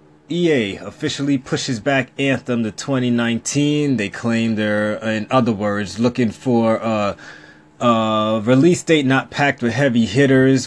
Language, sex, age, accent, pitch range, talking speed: English, male, 20-39, American, 105-125 Hz, 135 wpm